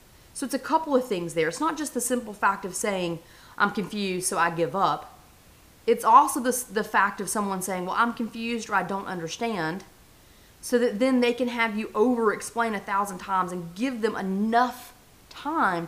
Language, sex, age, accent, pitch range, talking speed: English, female, 30-49, American, 180-235 Hz, 200 wpm